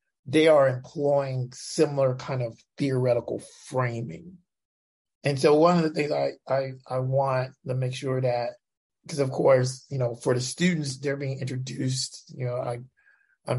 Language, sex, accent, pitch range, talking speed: English, male, American, 130-155 Hz, 165 wpm